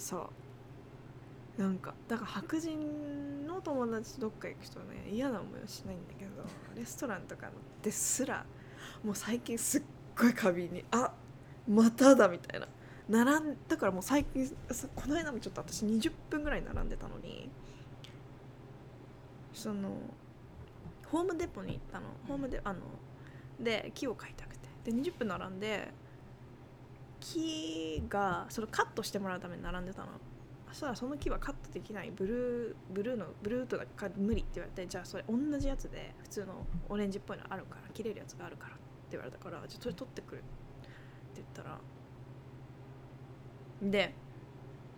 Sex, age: female, 20-39